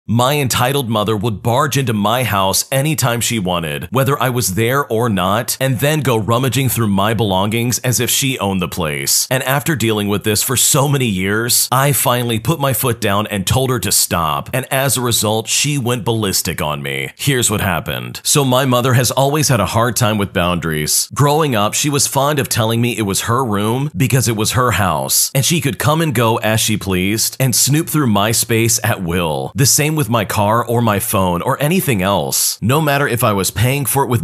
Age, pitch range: 40-59, 105-135 Hz